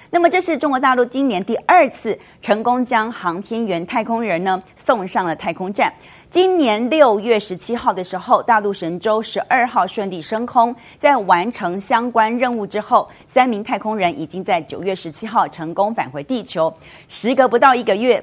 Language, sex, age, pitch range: Chinese, female, 30-49, 185-250 Hz